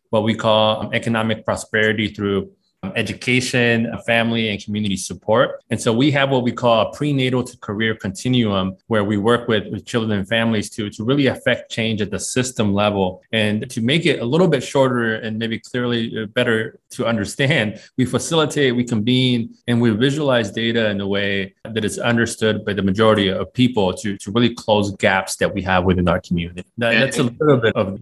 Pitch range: 105-125 Hz